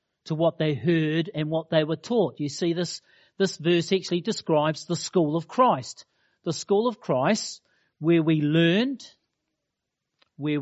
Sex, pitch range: male, 150-195 Hz